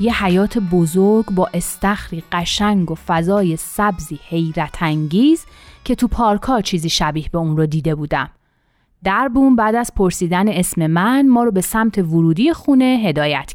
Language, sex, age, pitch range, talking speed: Persian, female, 30-49, 165-235 Hz, 150 wpm